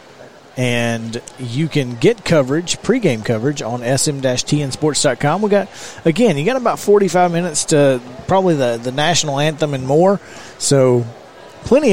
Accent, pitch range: American, 120-155 Hz